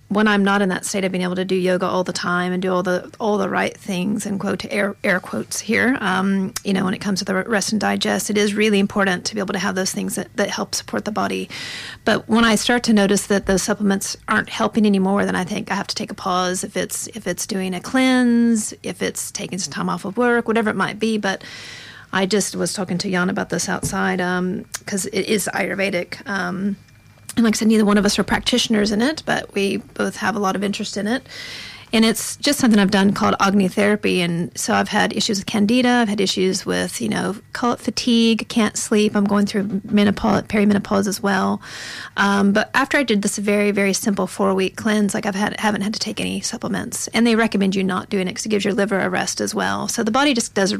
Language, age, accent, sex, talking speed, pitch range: English, 40-59, American, female, 255 wpm, 190-215 Hz